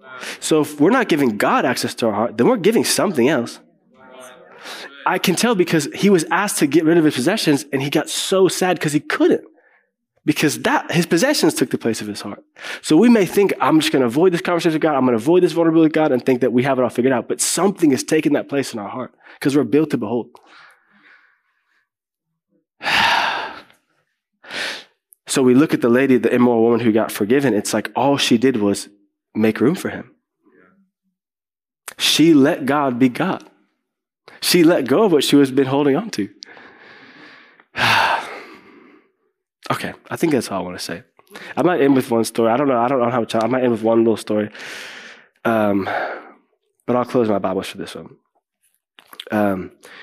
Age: 20-39